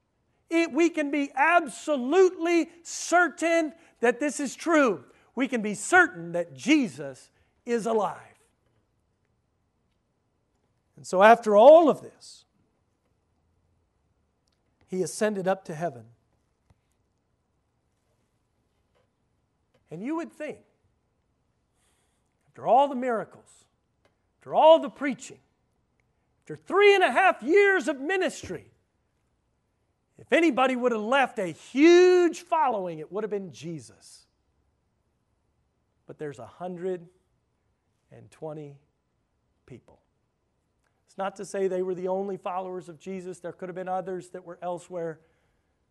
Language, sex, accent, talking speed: English, male, American, 110 wpm